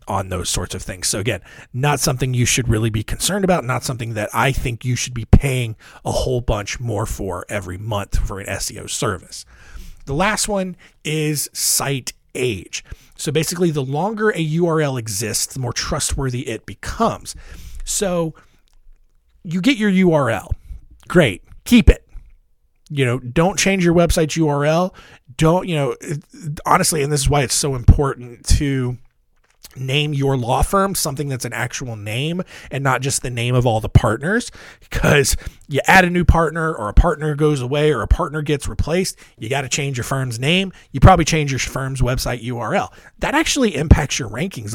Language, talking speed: English, 180 wpm